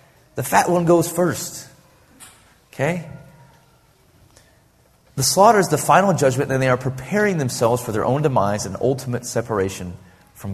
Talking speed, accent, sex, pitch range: 140 wpm, American, male, 105-140 Hz